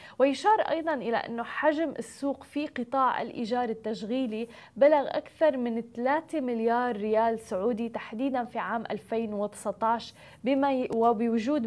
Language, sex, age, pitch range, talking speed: Arabic, female, 20-39, 220-265 Hz, 115 wpm